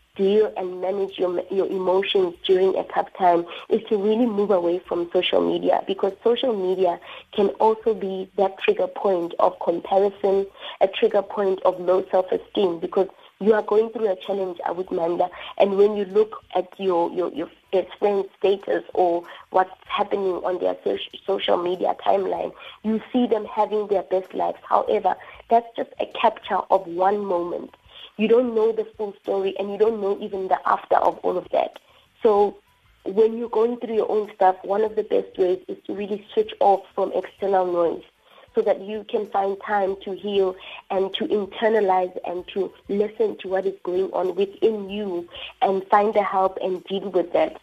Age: 30-49